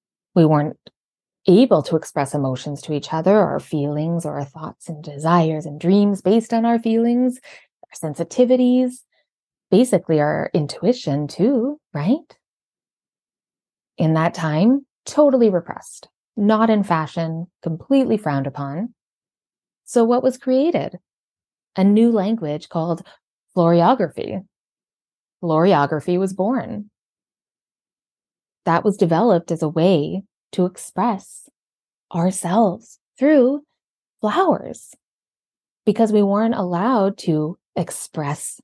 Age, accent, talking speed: 20-39, American, 110 wpm